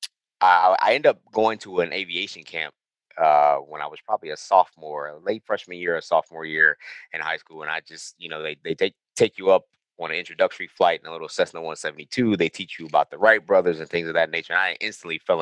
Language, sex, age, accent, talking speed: English, male, 20-39, American, 235 wpm